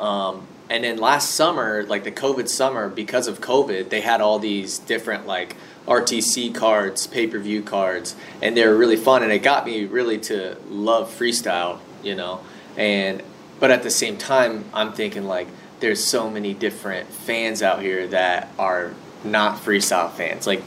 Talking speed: 170 wpm